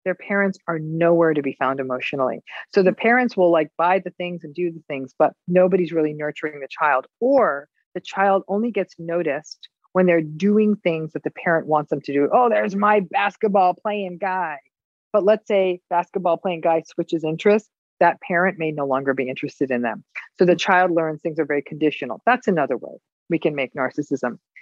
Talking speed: 195 wpm